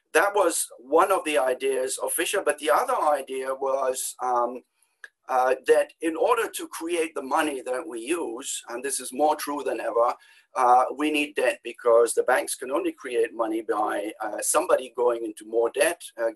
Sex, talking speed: male, 185 wpm